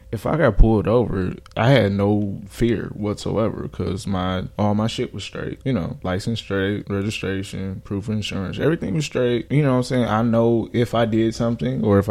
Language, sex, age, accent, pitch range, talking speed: English, male, 20-39, American, 100-115 Hz, 200 wpm